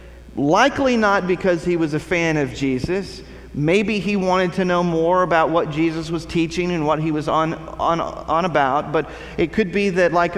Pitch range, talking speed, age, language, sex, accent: 135-180 Hz, 190 wpm, 40-59, English, male, American